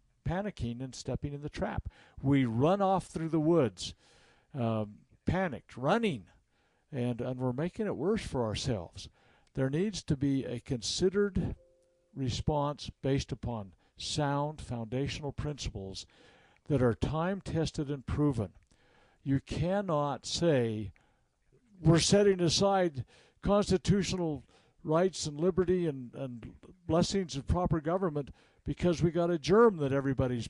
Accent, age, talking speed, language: American, 60-79, 125 wpm, English